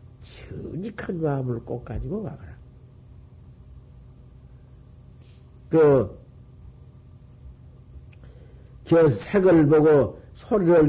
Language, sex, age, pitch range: Korean, male, 60-79, 110-140 Hz